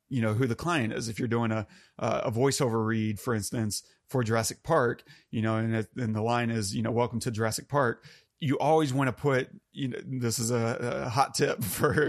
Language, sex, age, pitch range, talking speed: English, male, 30-49, 115-130 Hz, 225 wpm